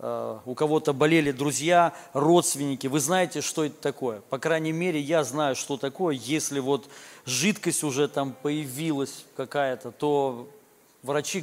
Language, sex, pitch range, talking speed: Russian, male, 140-170 Hz, 135 wpm